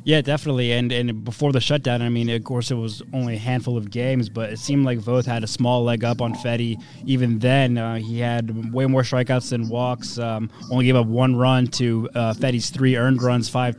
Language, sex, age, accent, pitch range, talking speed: English, male, 20-39, American, 120-140 Hz, 230 wpm